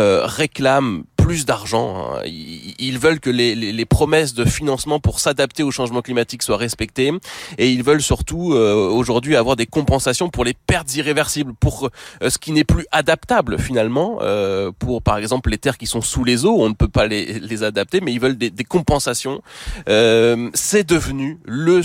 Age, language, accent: 20-39, French, French